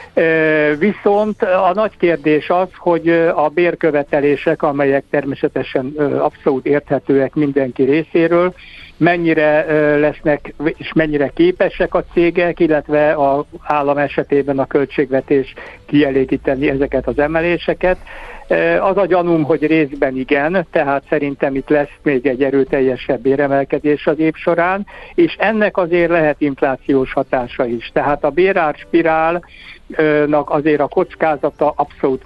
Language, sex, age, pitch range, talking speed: Hungarian, male, 60-79, 140-160 Hz, 115 wpm